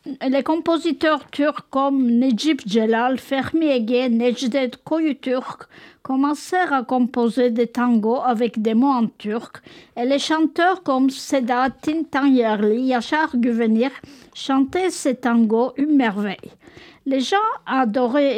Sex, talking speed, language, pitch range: female, 120 wpm, French, 230-275 Hz